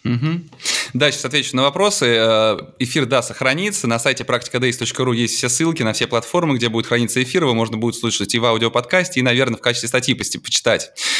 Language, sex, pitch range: Russian, male, 120-145 Hz